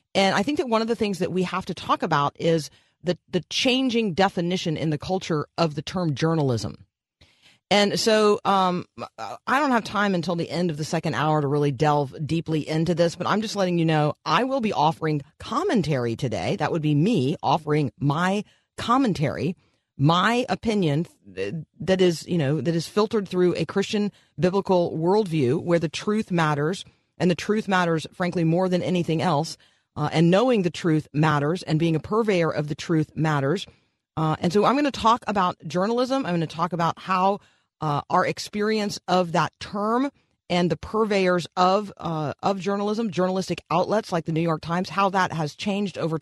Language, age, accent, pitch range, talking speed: English, 40-59, American, 155-195 Hz, 190 wpm